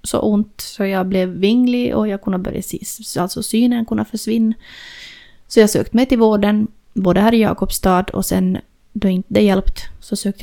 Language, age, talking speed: Swedish, 20-39, 185 wpm